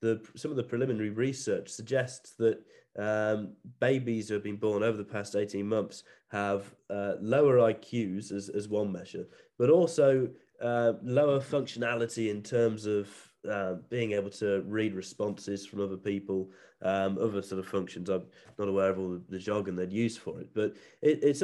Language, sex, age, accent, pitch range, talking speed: English, male, 30-49, British, 100-115 Hz, 175 wpm